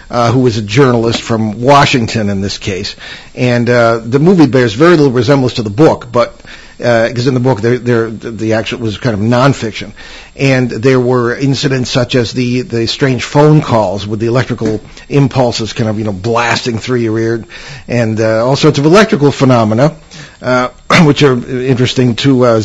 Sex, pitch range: male, 115-140 Hz